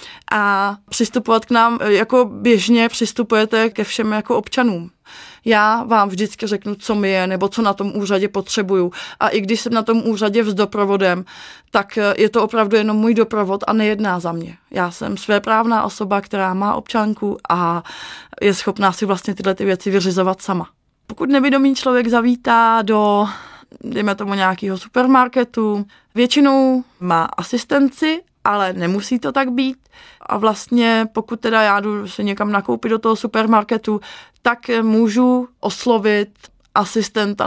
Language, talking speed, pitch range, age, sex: Czech, 150 wpm, 200-230 Hz, 20-39, female